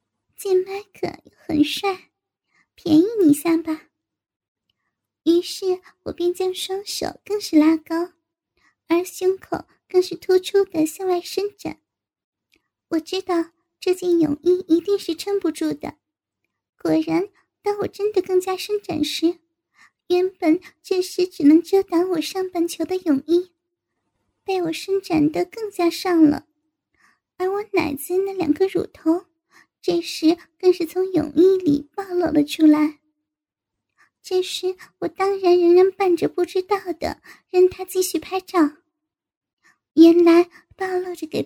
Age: 10-29